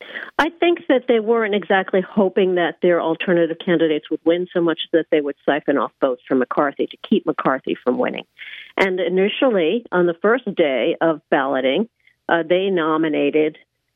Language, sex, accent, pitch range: English, female, American, 170-225 Hz